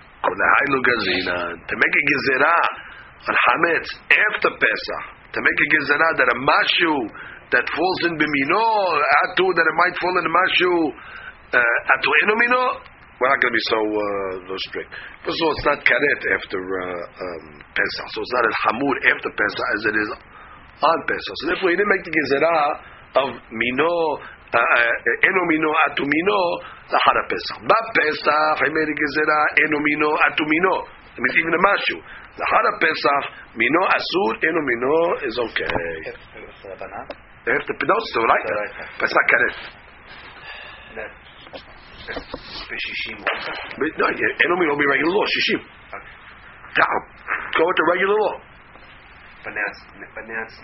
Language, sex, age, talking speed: English, male, 40-59, 140 wpm